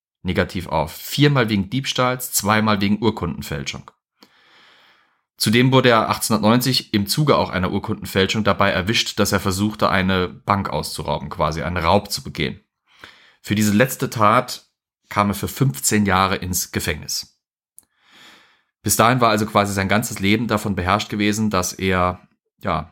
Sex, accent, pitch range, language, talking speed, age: male, German, 95-110 Hz, German, 145 wpm, 30-49